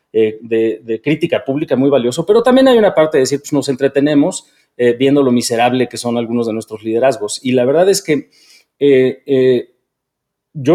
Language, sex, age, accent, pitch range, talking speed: Spanish, male, 40-59, Mexican, 110-140 Hz, 195 wpm